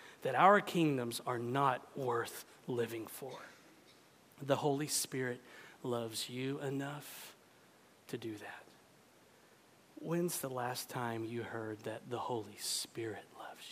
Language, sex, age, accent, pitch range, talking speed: English, male, 40-59, American, 140-210 Hz, 120 wpm